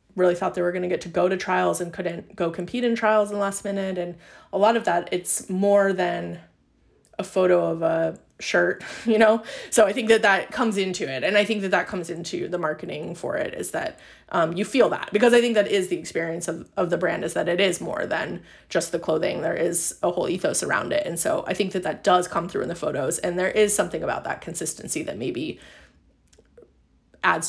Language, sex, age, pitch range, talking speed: English, female, 20-39, 175-205 Hz, 240 wpm